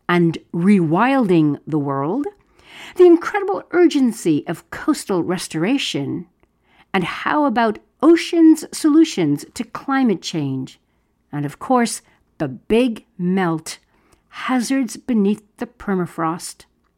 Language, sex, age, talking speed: English, female, 60-79, 100 wpm